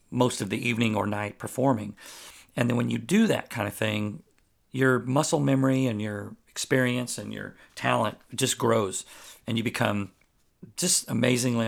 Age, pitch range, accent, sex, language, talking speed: 40-59, 110-130 Hz, American, male, English, 165 wpm